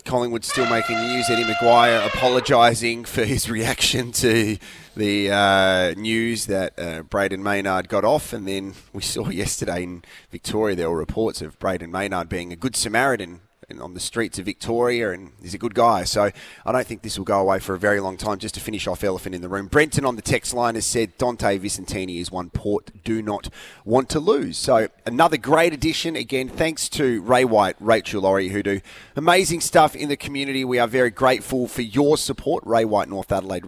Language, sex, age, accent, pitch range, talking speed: English, male, 30-49, Australian, 100-130 Hz, 205 wpm